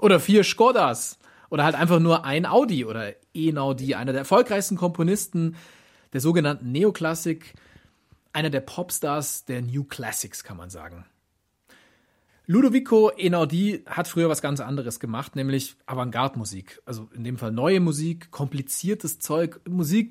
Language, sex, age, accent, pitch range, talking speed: German, male, 30-49, German, 130-175 Hz, 135 wpm